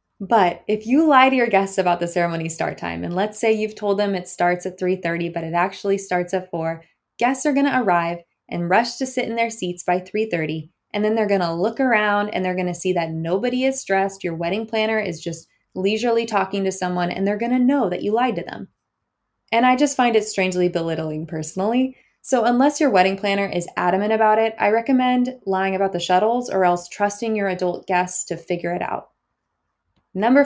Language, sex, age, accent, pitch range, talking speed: English, female, 20-39, American, 180-230 Hz, 220 wpm